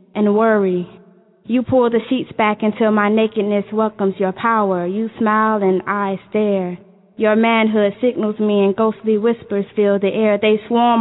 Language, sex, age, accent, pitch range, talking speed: English, female, 10-29, American, 205-245 Hz, 165 wpm